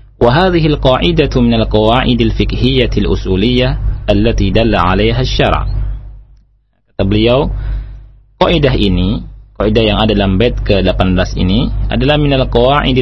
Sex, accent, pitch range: male, native, 105-125 Hz